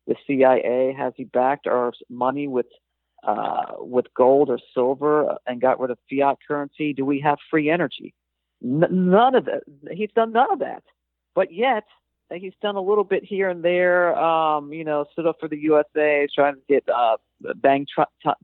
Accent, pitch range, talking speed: American, 130-165 Hz, 190 wpm